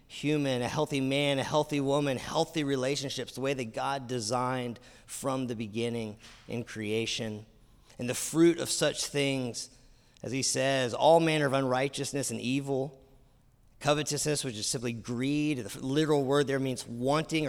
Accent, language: American, English